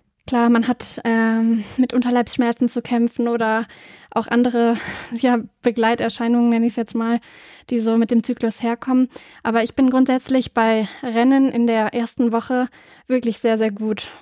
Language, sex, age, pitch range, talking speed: German, female, 10-29, 230-250 Hz, 160 wpm